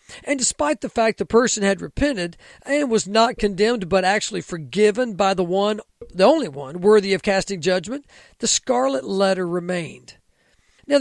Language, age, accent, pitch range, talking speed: English, 40-59, American, 190-245 Hz, 165 wpm